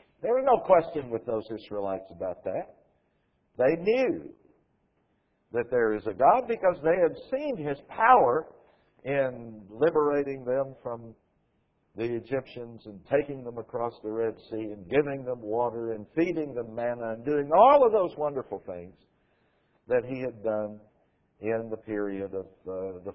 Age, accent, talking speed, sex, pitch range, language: 60-79, American, 155 wpm, male, 105-165 Hz, English